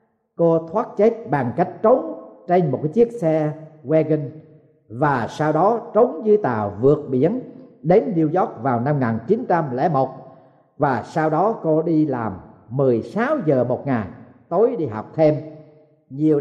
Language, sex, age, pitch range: Thai, male, 50-69, 145-190 Hz